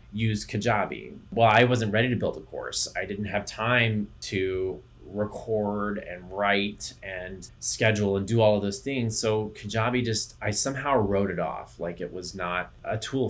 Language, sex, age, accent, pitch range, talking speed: English, male, 20-39, American, 100-125 Hz, 180 wpm